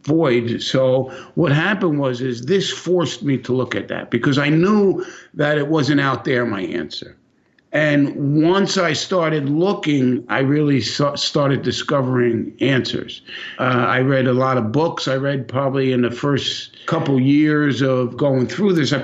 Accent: American